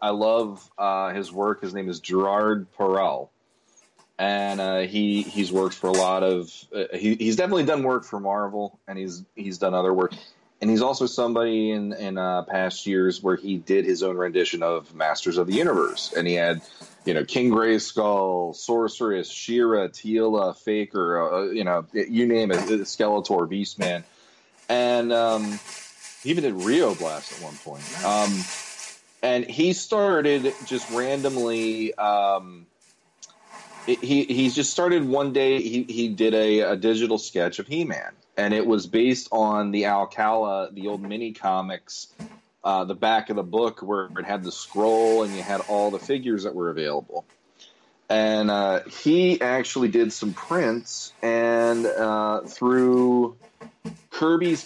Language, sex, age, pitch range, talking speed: English, male, 30-49, 100-125 Hz, 160 wpm